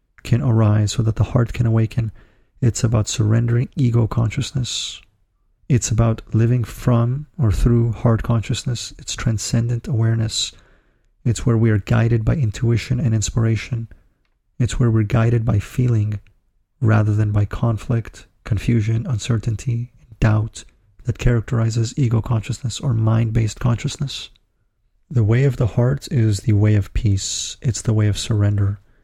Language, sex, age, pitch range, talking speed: English, male, 30-49, 105-120 Hz, 145 wpm